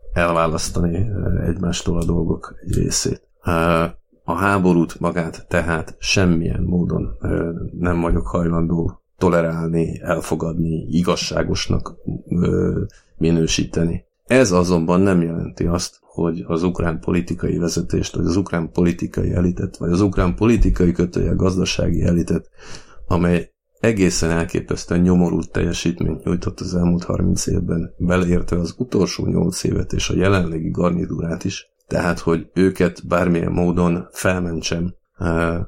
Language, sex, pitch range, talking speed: Hungarian, male, 85-90 Hz, 115 wpm